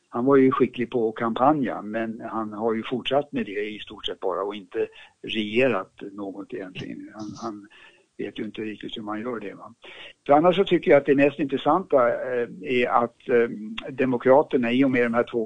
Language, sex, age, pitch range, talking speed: Swedish, male, 60-79, 115-135 Hz, 200 wpm